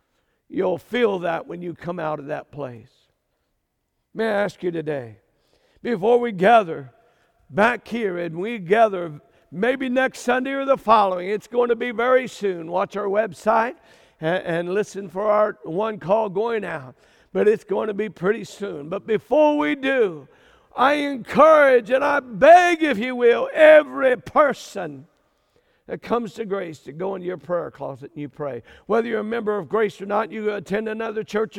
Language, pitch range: English, 175-255 Hz